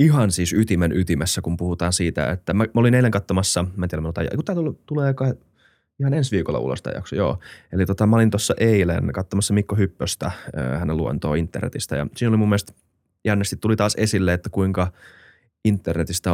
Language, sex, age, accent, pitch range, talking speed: Finnish, male, 30-49, native, 85-105 Hz, 185 wpm